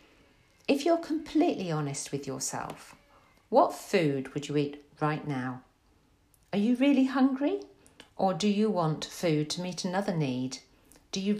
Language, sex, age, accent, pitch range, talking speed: English, female, 50-69, British, 145-205 Hz, 145 wpm